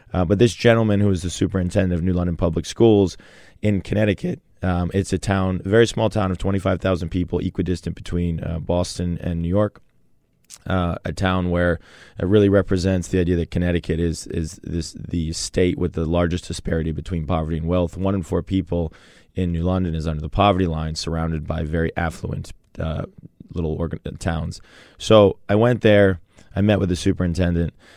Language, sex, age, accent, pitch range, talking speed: English, male, 20-39, American, 85-100 Hz, 185 wpm